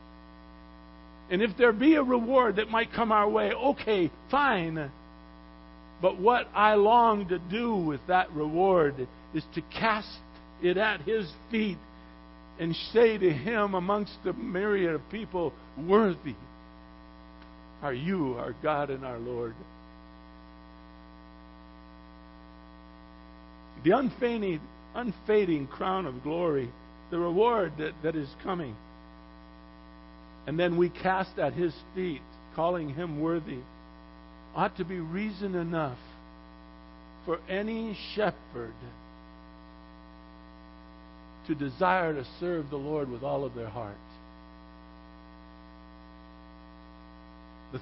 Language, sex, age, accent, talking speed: English, male, 60-79, American, 110 wpm